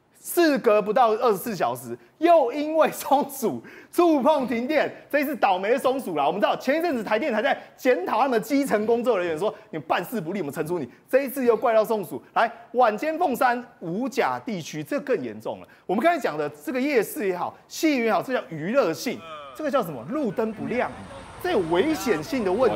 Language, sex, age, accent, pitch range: Chinese, male, 30-49, native, 195-280 Hz